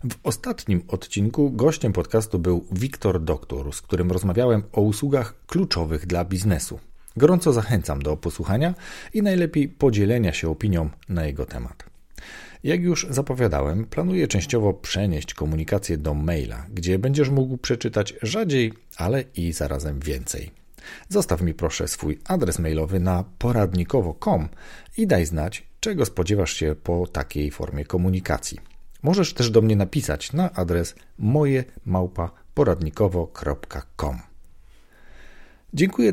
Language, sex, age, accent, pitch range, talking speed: Polish, male, 40-59, native, 80-125 Hz, 120 wpm